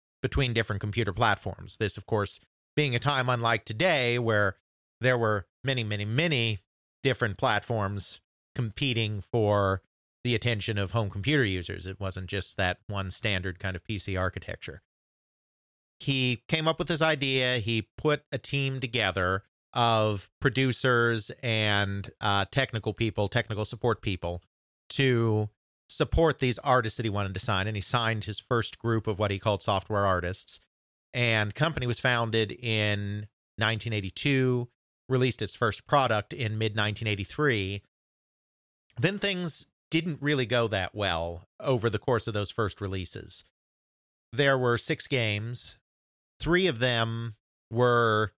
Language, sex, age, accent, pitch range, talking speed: English, male, 40-59, American, 100-125 Hz, 145 wpm